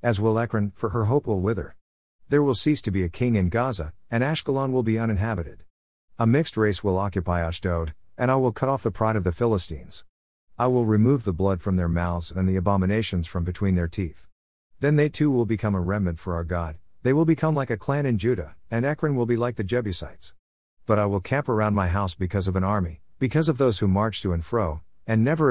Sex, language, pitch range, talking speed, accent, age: male, English, 90-120 Hz, 235 wpm, American, 50-69